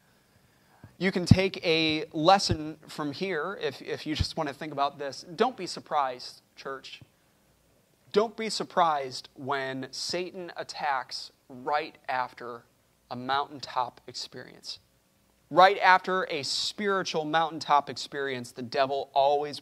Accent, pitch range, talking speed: American, 150-185 Hz, 120 wpm